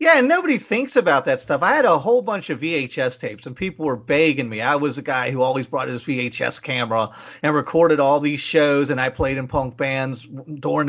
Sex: male